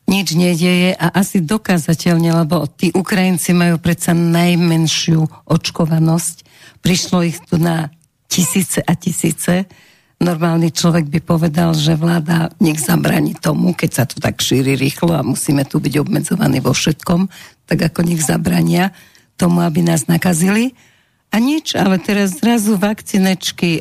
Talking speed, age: 140 wpm, 50-69